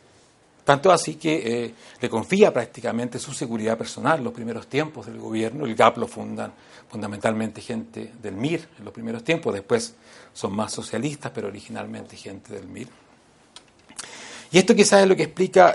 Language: Spanish